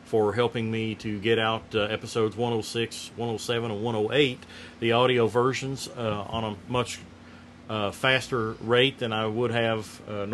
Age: 40-59